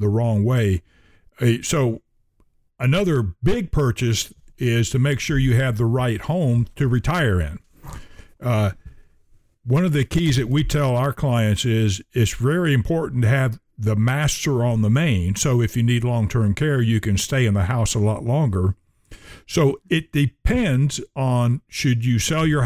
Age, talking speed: 60-79, 165 wpm